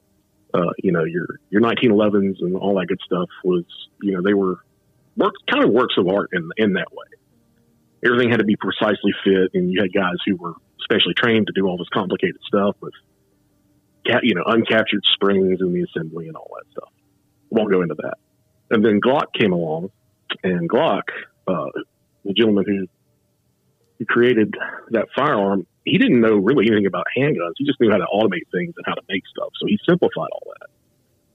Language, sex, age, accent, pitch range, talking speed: English, male, 40-59, American, 95-110 Hz, 195 wpm